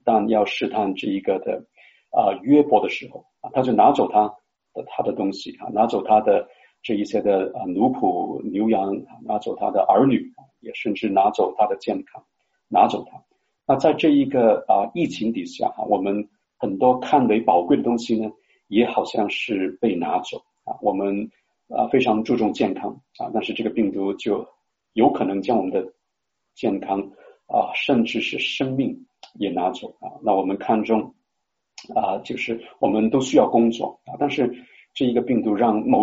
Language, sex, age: Chinese, male, 50-69